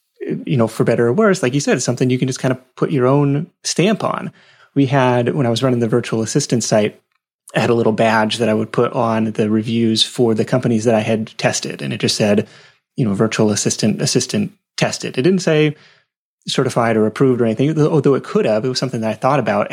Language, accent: English, American